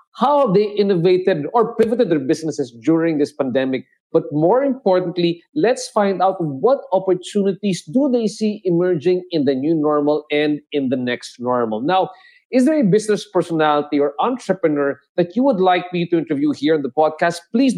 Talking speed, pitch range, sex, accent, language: 170 wpm, 155-200 Hz, male, Filipino, English